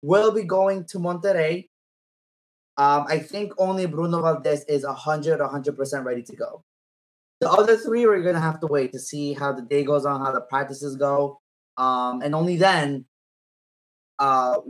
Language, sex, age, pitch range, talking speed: English, male, 20-39, 125-145 Hz, 170 wpm